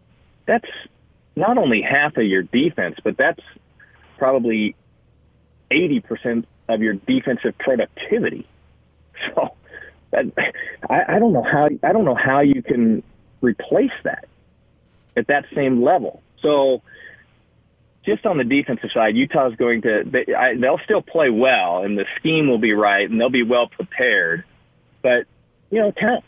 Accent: American